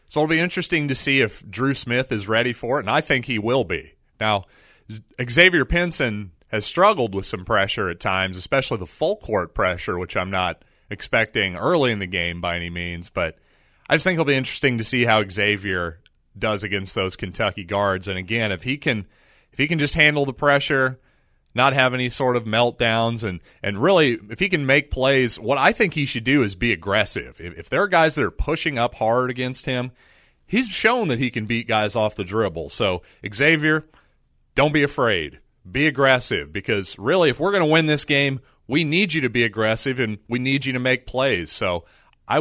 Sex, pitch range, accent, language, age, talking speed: male, 105-140 Hz, American, English, 30-49, 205 wpm